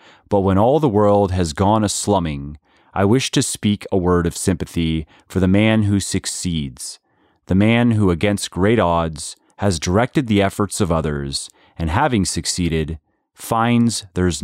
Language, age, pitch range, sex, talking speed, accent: English, 30-49, 85-105 Hz, male, 160 wpm, American